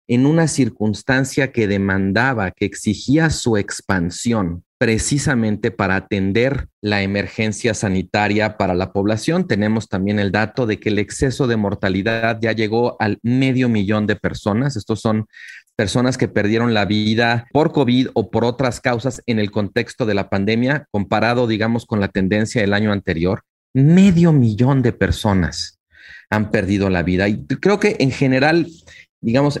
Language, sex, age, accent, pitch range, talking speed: Spanish, male, 40-59, Mexican, 105-130 Hz, 155 wpm